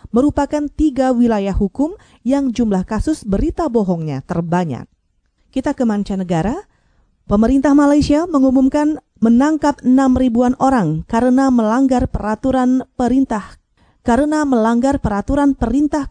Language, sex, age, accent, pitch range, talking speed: Indonesian, female, 30-49, native, 210-275 Hz, 100 wpm